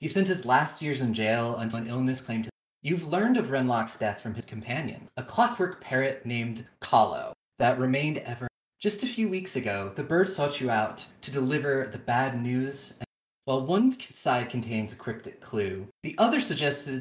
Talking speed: 190 wpm